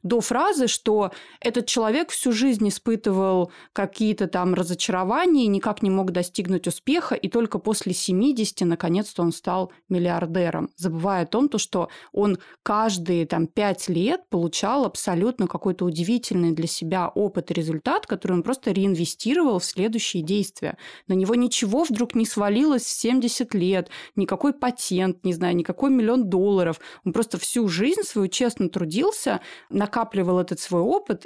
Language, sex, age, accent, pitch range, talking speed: Russian, female, 20-39, native, 185-235 Hz, 150 wpm